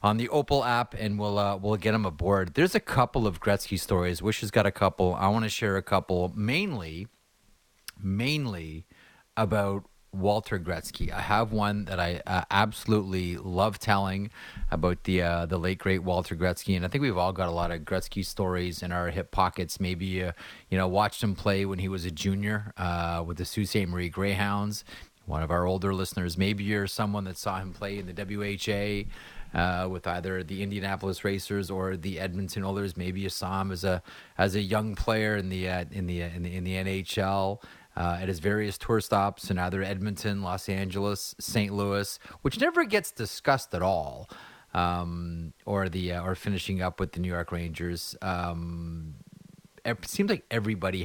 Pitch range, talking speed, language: 90-105 Hz, 195 wpm, English